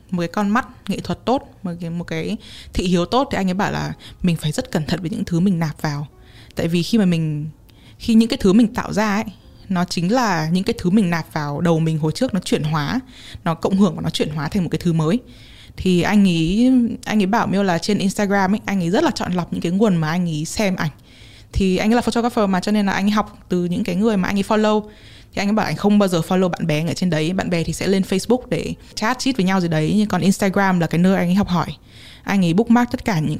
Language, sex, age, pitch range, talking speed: Vietnamese, female, 20-39, 165-210 Hz, 285 wpm